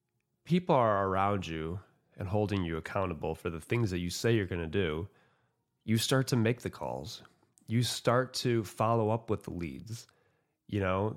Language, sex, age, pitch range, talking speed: English, male, 30-49, 100-125 Hz, 185 wpm